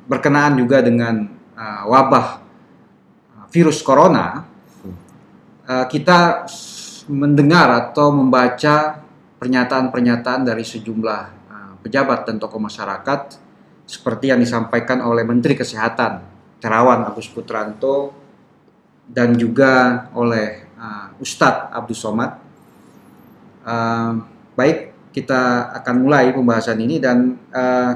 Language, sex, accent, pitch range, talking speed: Indonesian, male, native, 115-140 Hz, 95 wpm